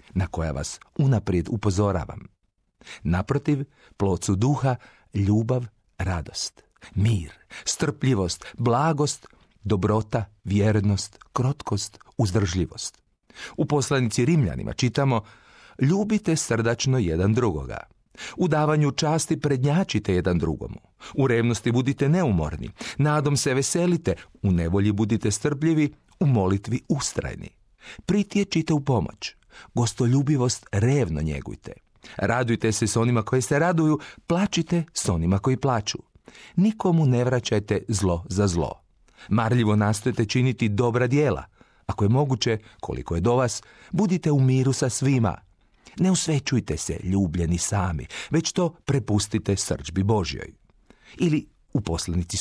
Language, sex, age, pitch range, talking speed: Croatian, male, 40-59, 100-150 Hz, 110 wpm